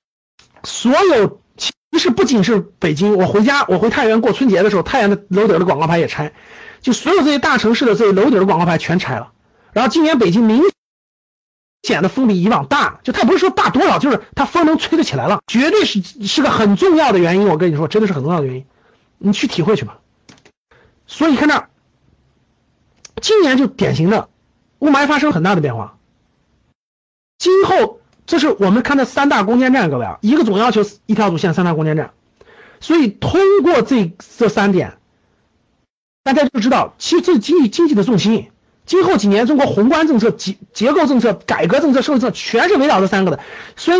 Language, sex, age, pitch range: Chinese, male, 50-69, 195-295 Hz